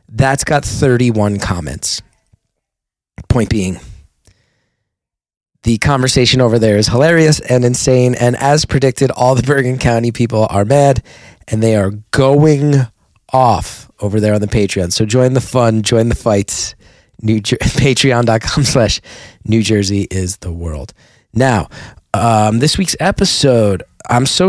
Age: 30-49